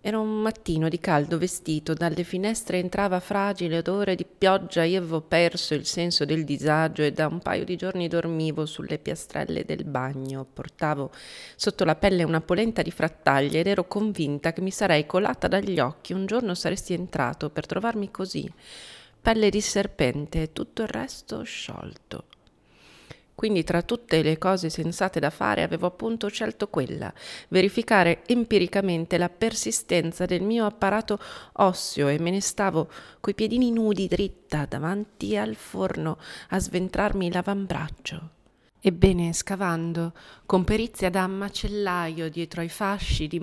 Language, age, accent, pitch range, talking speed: Italian, 30-49, native, 155-195 Hz, 145 wpm